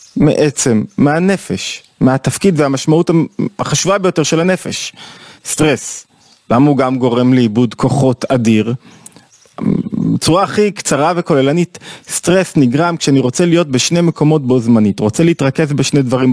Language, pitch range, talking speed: Hebrew, 125-165 Hz, 120 wpm